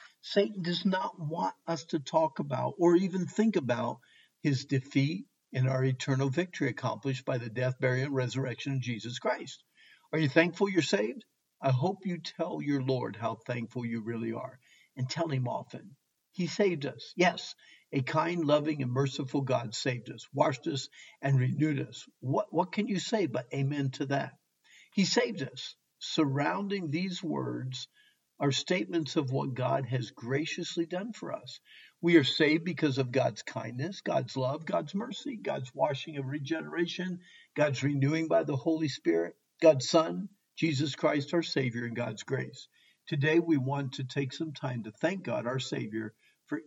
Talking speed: 170 wpm